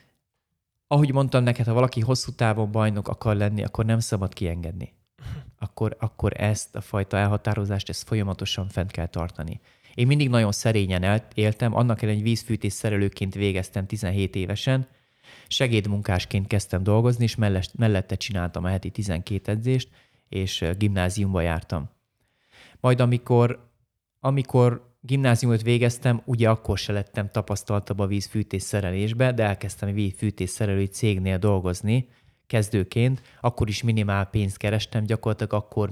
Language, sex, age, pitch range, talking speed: Hungarian, male, 30-49, 100-120 Hz, 130 wpm